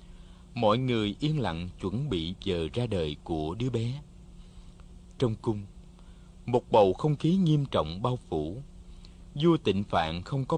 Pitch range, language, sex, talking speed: 90-150 Hz, Vietnamese, male, 155 wpm